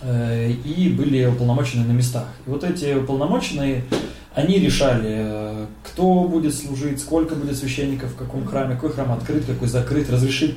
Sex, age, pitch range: male, 20-39, 115-135 Hz